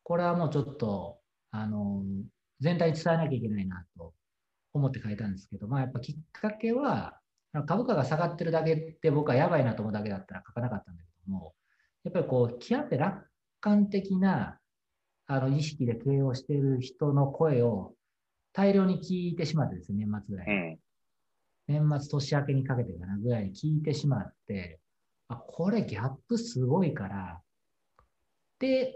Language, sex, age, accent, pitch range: Japanese, male, 40-59, native, 110-165 Hz